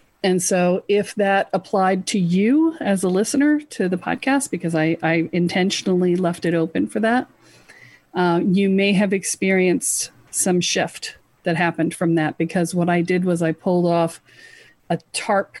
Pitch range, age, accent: 170-215 Hz, 40-59, American